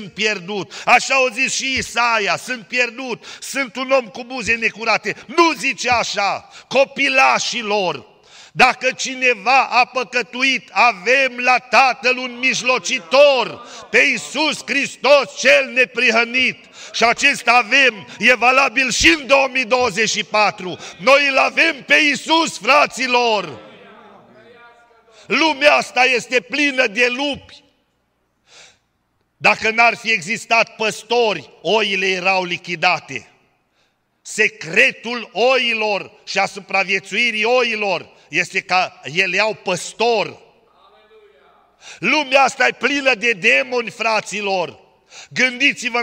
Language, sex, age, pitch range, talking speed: Romanian, male, 50-69, 210-255 Hz, 105 wpm